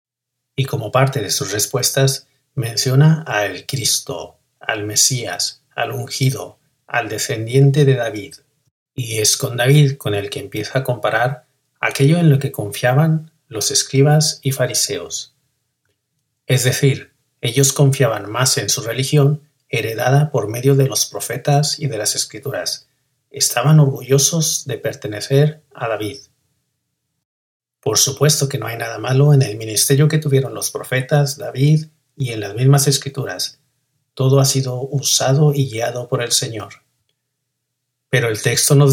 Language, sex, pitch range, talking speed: Spanish, male, 125-145 Hz, 145 wpm